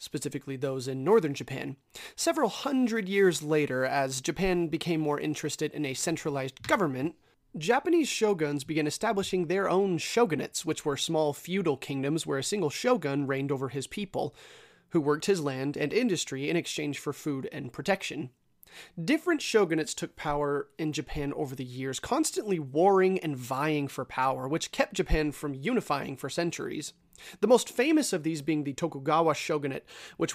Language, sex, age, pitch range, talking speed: English, male, 30-49, 140-195 Hz, 160 wpm